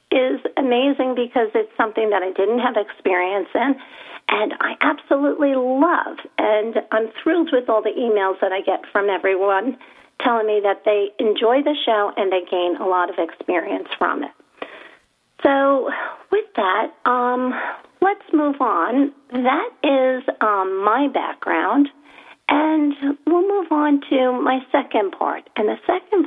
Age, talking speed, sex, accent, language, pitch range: 50-69, 150 wpm, female, American, English, 210-295 Hz